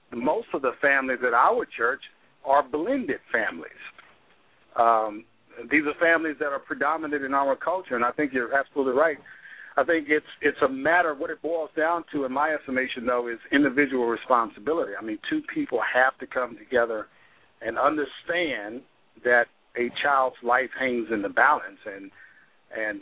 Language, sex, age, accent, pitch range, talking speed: English, male, 50-69, American, 120-155 Hz, 170 wpm